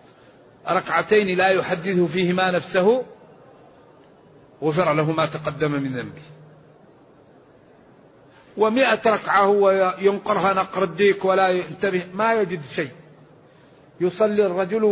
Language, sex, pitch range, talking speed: Arabic, male, 160-205 Hz, 95 wpm